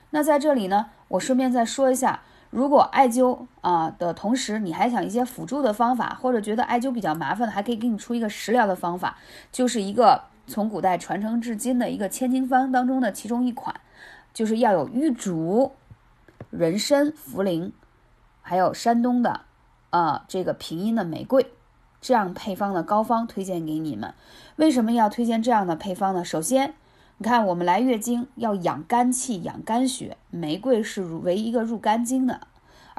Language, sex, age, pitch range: Chinese, female, 20-39, 195-255 Hz